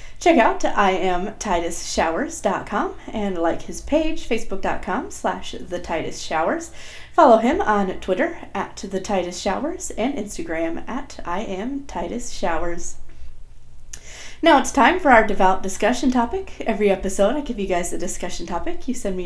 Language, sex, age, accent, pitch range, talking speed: English, female, 30-49, American, 185-270 Hz, 130 wpm